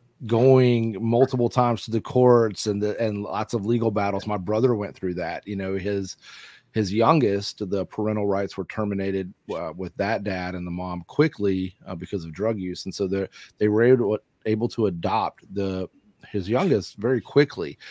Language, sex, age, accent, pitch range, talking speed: English, male, 30-49, American, 100-120 Hz, 190 wpm